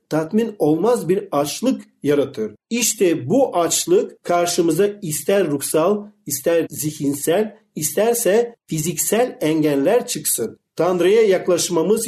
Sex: male